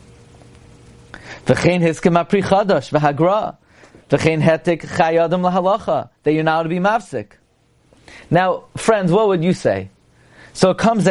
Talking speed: 80 wpm